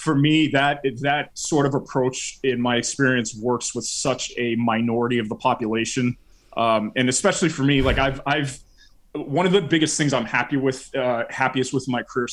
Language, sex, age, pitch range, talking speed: English, male, 20-39, 120-140 Hz, 190 wpm